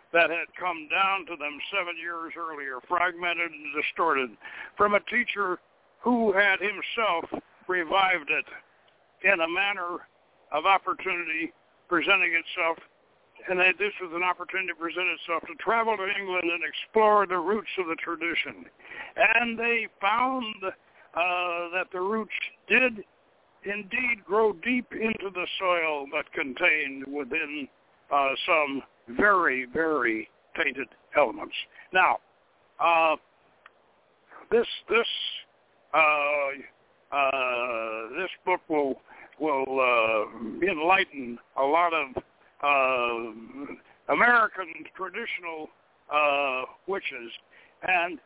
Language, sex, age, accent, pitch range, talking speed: English, male, 60-79, American, 155-205 Hz, 115 wpm